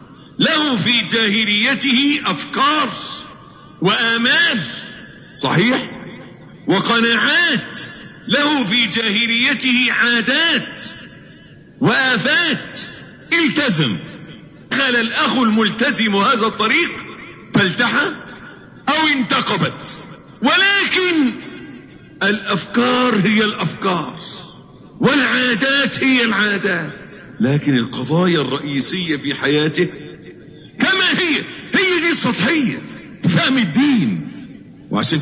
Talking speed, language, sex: 70 wpm, Arabic, male